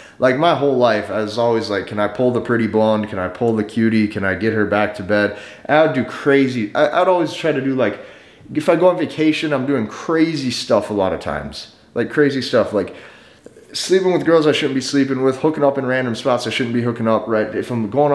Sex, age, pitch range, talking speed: male, 30-49, 110-145 Hz, 245 wpm